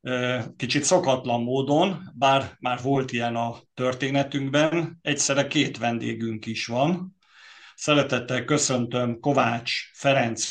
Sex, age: male, 50-69